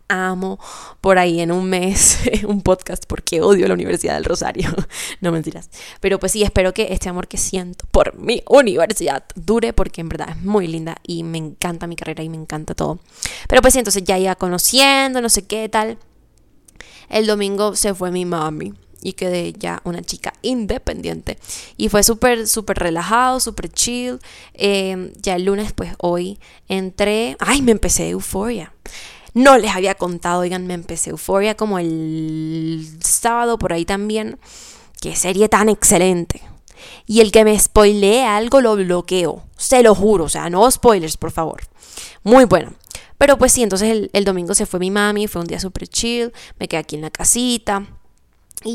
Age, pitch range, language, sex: 10-29, 175-220 Hz, Spanish, female